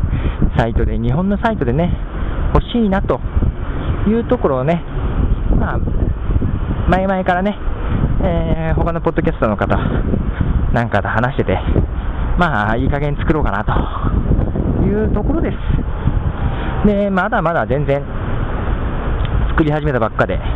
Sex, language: male, Japanese